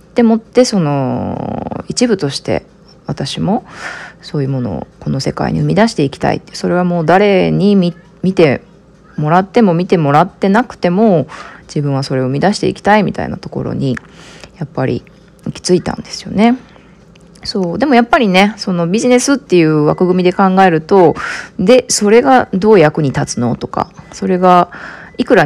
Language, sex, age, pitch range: Japanese, female, 20-39, 160-225 Hz